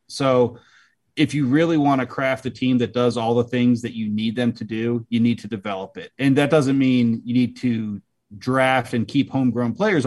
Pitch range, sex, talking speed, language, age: 115-135 Hz, male, 220 wpm, English, 30-49